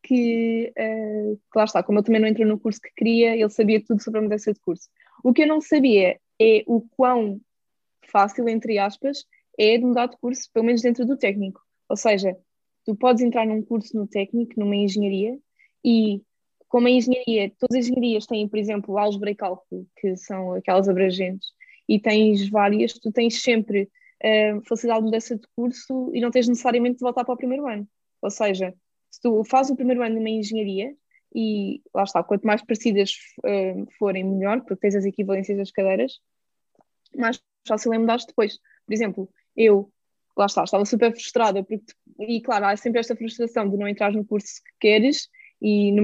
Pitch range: 205-245 Hz